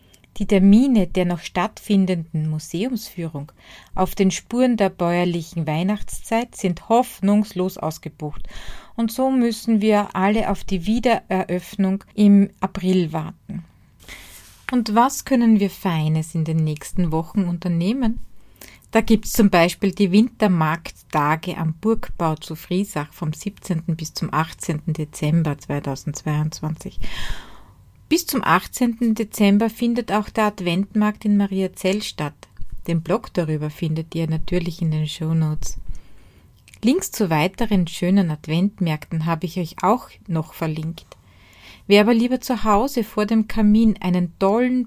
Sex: female